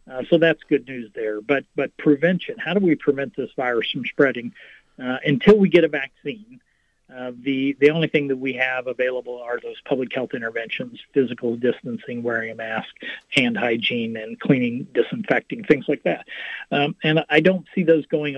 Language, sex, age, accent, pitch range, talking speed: English, male, 50-69, American, 125-155 Hz, 185 wpm